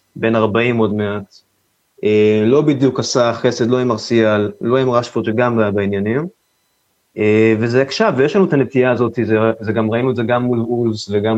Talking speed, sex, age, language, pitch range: 180 wpm, male, 20-39, Hebrew, 105-130 Hz